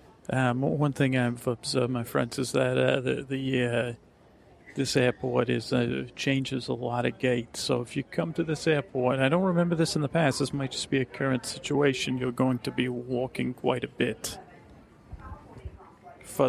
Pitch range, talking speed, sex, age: 120-140 Hz, 190 wpm, male, 40-59